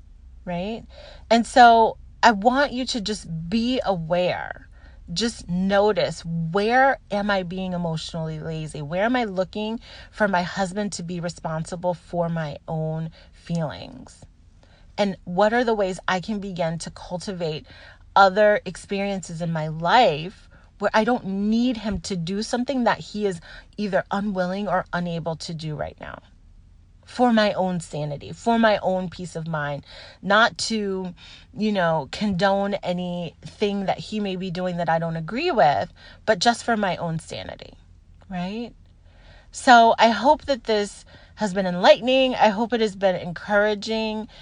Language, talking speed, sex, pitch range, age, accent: English, 155 wpm, female, 165-215 Hz, 30-49, American